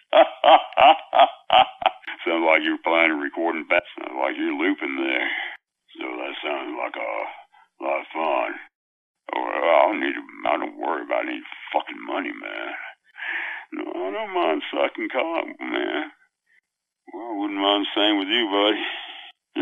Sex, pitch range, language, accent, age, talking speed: male, 315-370 Hz, English, American, 60-79, 150 wpm